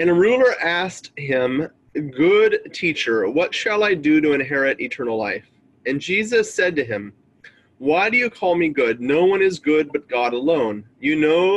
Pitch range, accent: 120-165 Hz, American